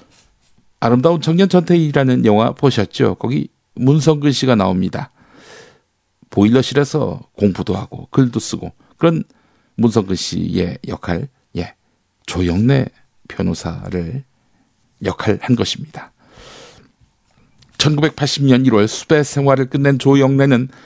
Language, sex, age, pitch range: Korean, male, 50-69, 110-150 Hz